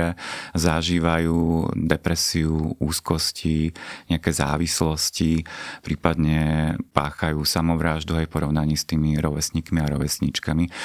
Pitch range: 75-90 Hz